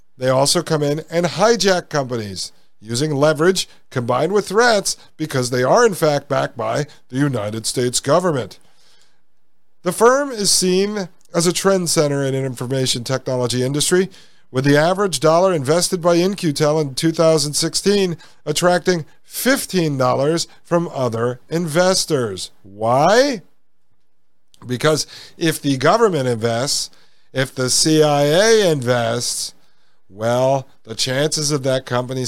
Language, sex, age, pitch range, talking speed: English, male, 50-69, 125-180 Hz, 125 wpm